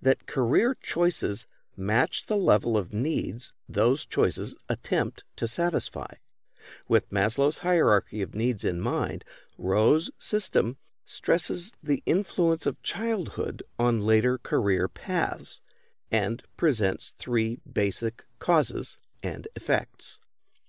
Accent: American